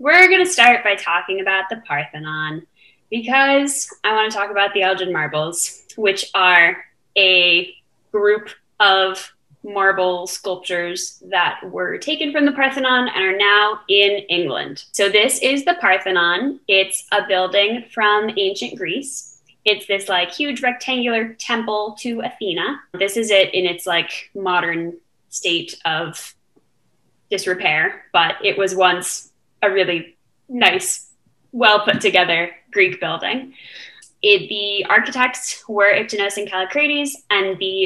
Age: 10-29